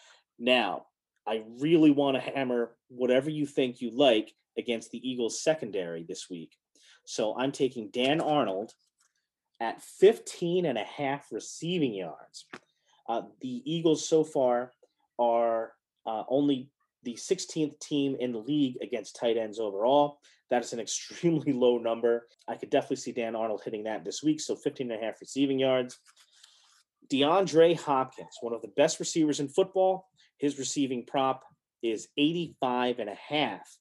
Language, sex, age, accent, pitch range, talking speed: English, male, 30-49, American, 115-145 Hz, 155 wpm